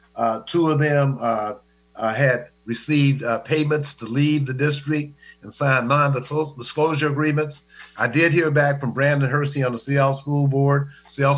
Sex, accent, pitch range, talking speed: male, American, 125-150 Hz, 165 wpm